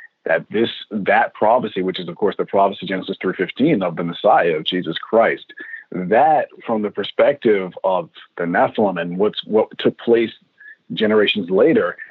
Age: 40-59